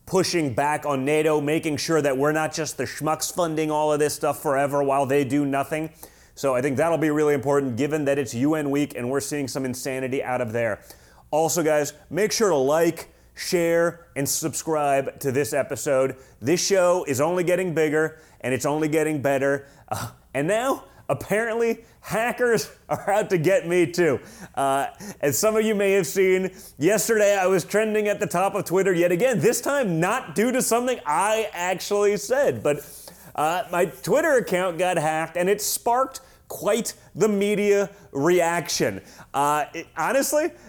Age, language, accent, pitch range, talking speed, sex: 30-49, English, American, 150-210 Hz, 180 wpm, male